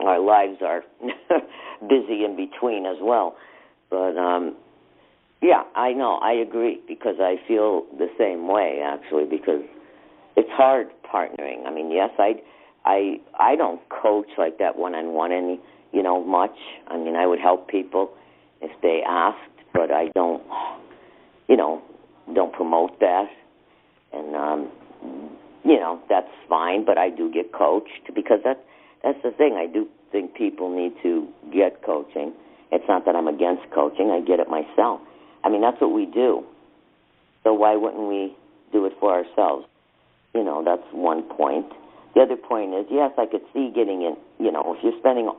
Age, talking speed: 50-69, 165 wpm